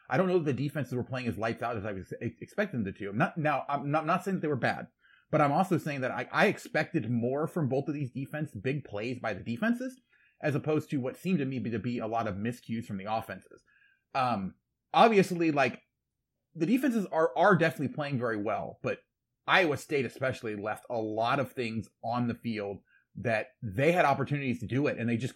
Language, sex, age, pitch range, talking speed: English, male, 30-49, 115-160 Hz, 220 wpm